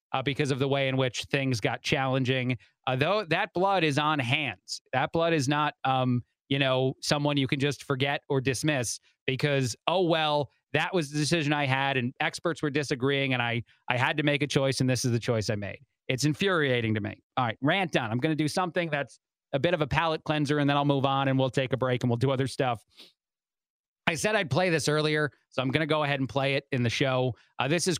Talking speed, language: 245 wpm, English